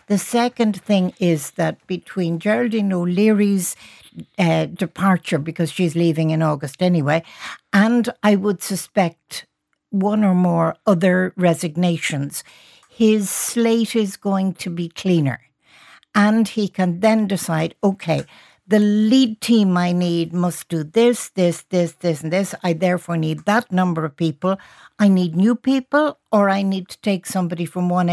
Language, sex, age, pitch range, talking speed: English, female, 60-79, 170-220 Hz, 145 wpm